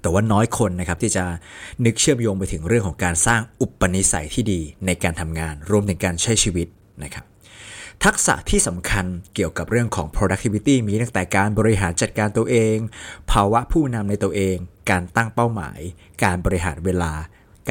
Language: Thai